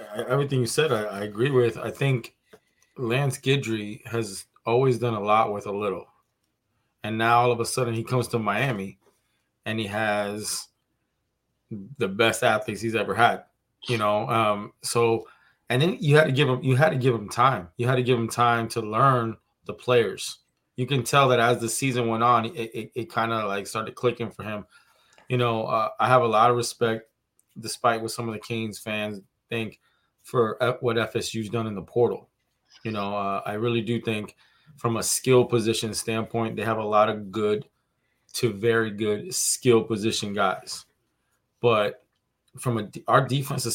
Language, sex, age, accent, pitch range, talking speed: English, male, 20-39, American, 110-125 Hz, 185 wpm